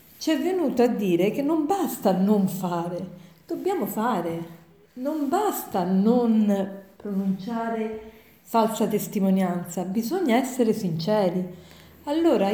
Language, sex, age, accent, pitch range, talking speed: Italian, female, 40-59, native, 190-250 Hz, 105 wpm